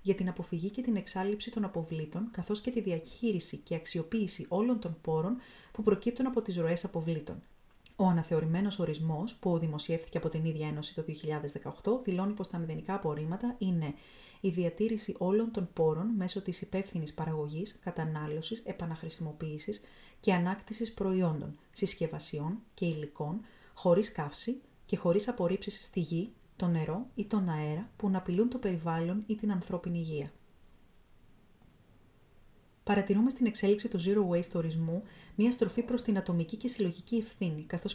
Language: Greek